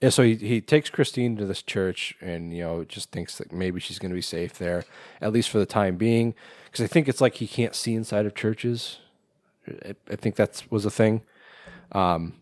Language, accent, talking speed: English, American, 225 wpm